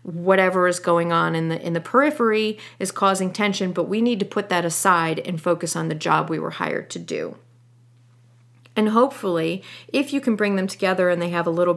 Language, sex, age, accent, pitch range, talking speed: English, female, 40-59, American, 165-195 Hz, 215 wpm